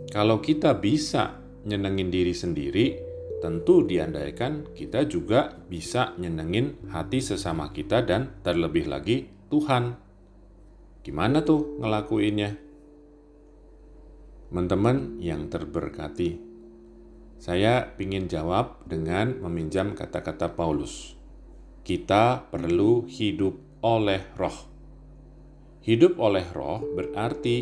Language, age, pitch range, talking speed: Indonesian, 40-59, 95-140 Hz, 90 wpm